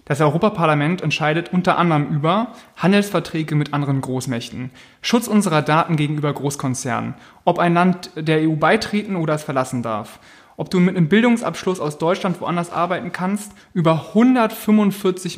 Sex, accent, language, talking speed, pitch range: male, German, German, 145 wpm, 140-180 Hz